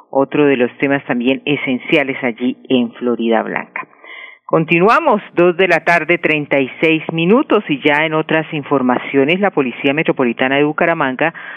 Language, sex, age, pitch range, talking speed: Spanish, female, 40-59, 130-165 Hz, 150 wpm